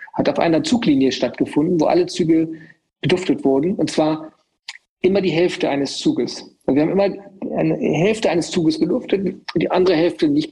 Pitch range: 155-190 Hz